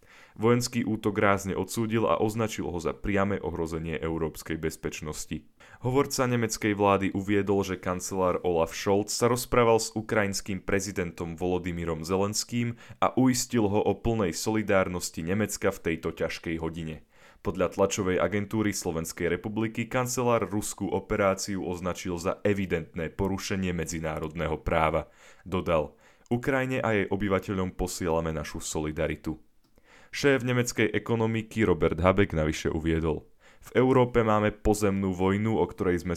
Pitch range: 85-110 Hz